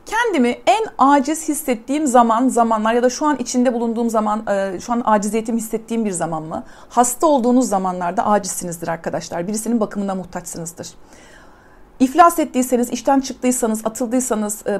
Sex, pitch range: female, 195-255 Hz